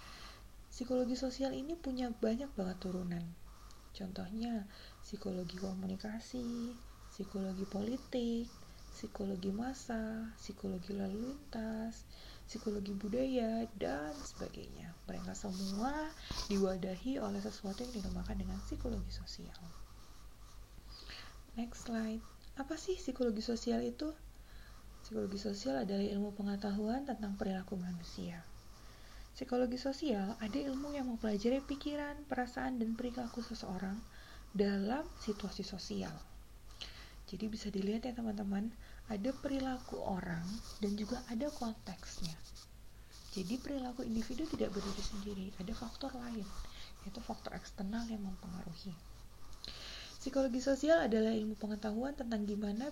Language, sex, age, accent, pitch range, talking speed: Indonesian, female, 30-49, native, 190-245 Hz, 105 wpm